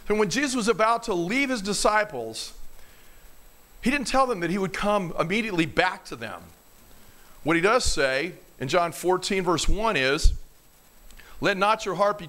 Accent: American